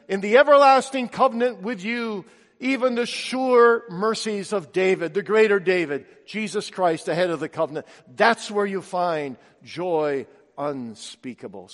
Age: 50-69